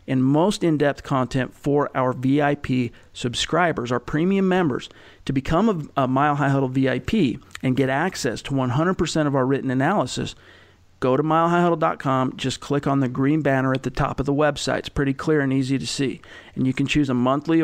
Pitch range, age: 130-150 Hz, 40-59